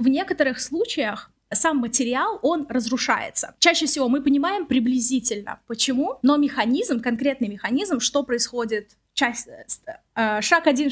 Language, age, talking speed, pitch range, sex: Russian, 20-39, 125 wpm, 240-305 Hz, female